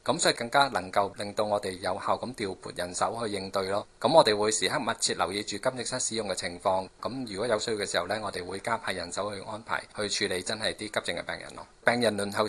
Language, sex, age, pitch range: Chinese, male, 20-39, 100-120 Hz